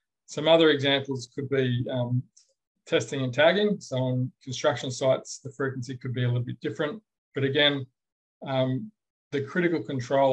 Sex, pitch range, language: male, 120-140 Hz, English